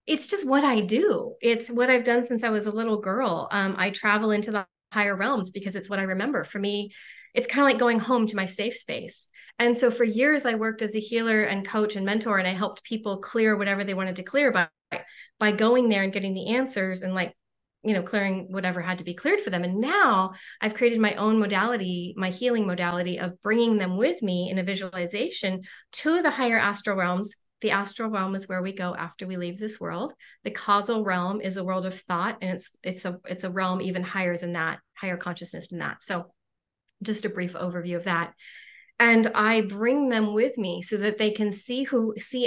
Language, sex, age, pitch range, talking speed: English, female, 30-49, 185-225 Hz, 225 wpm